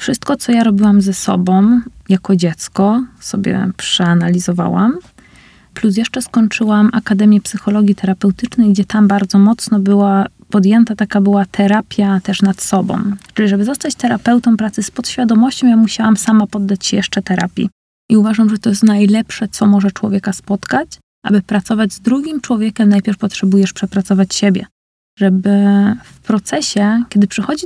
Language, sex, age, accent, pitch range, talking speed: Polish, female, 20-39, native, 200-230 Hz, 145 wpm